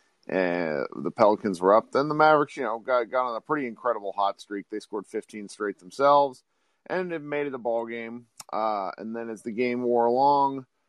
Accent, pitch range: American, 100-125 Hz